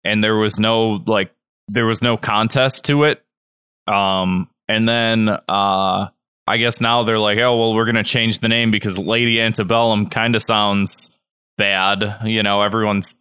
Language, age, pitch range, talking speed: English, 20-39, 100-125 Hz, 170 wpm